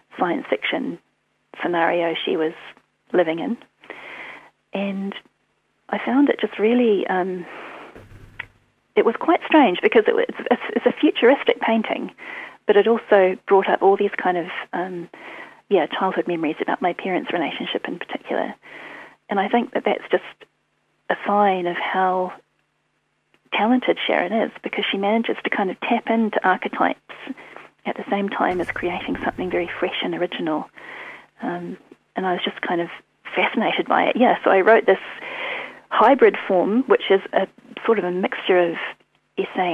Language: English